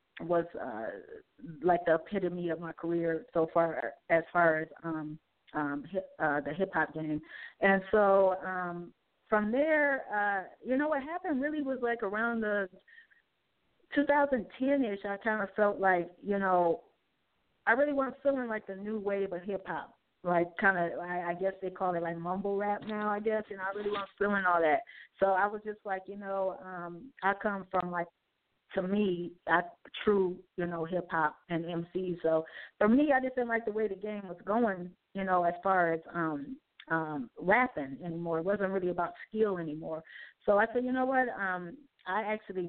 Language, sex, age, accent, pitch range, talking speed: English, female, 20-39, American, 170-210 Hz, 190 wpm